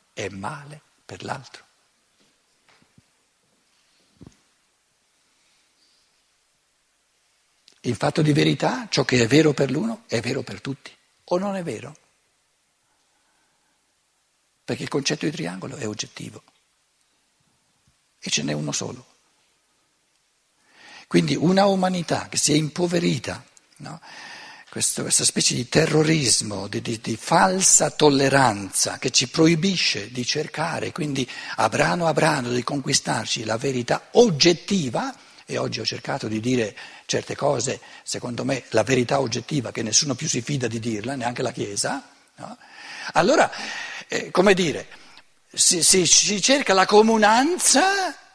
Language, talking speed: Italian, 125 wpm